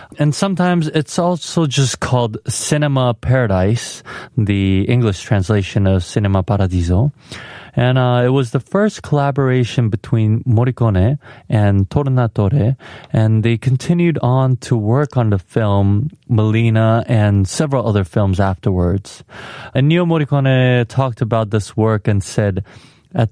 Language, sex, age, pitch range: Korean, male, 20-39, 105-130 Hz